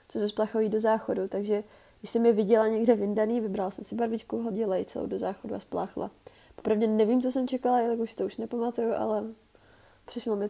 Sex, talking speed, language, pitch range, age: female, 205 wpm, Czech, 210-240 Hz, 20-39